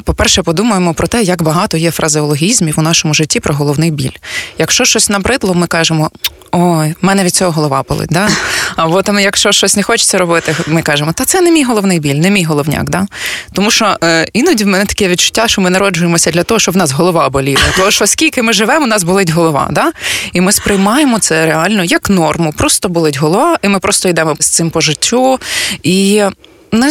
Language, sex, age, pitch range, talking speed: Ukrainian, female, 20-39, 160-210 Hz, 210 wpm